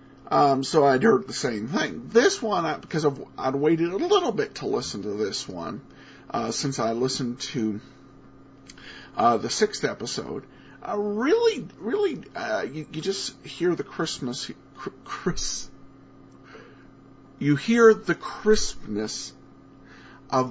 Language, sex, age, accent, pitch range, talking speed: English, male, 50-69, American, 140-210 Hz, 145 wpm